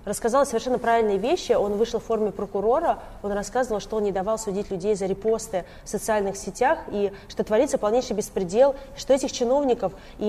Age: 20-39